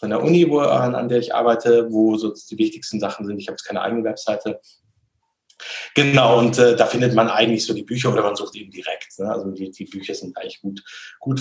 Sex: male